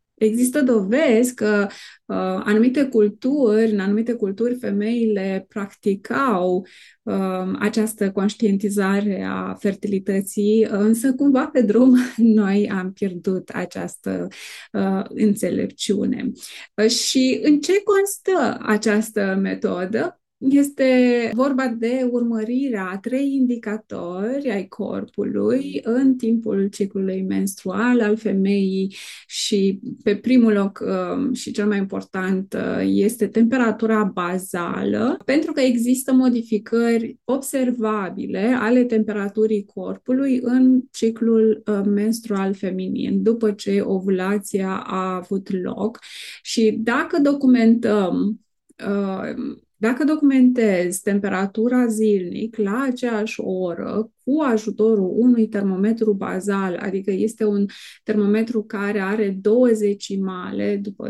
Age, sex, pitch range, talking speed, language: 20-39, female, 200-245 Hz, 100 wpm, Romanian